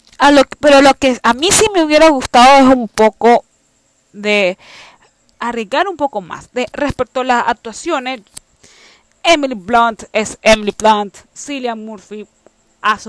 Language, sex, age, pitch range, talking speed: Spanish, female, 20-39, 210-285 Hz, 140 wpm